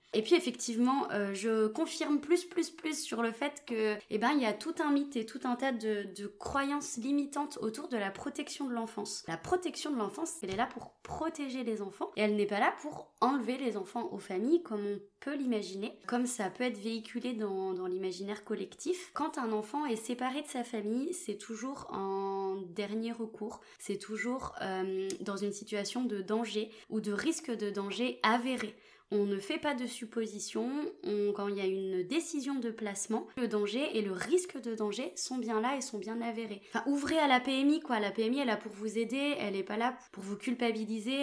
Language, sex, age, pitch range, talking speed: French, female, 20-39, 205-260 Hz, 210 wpm